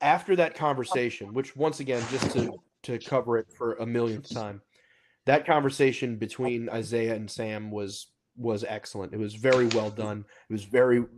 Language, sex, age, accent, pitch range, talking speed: English, male, 30-49, American, 115-140 Hz, 170 wpm